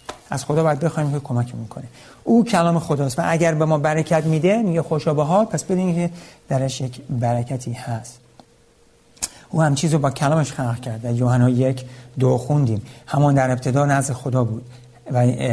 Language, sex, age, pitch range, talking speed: Persian, male, 60-79, 125-150 Hz, 160 wpm